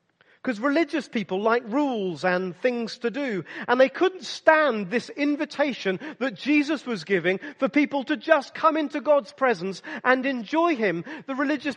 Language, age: English, 40-59